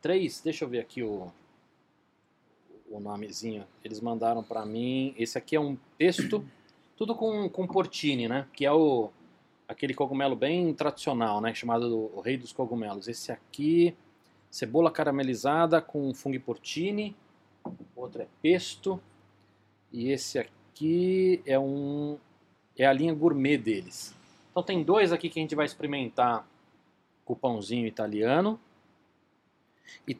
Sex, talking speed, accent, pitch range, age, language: male, 135 wpm, Brazilian, 120-155 Hz, 40-59, Portuguese